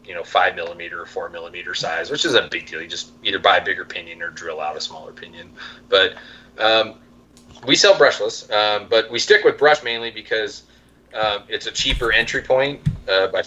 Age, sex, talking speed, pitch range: 30-49, male, 215 wpm, 100-130 Hz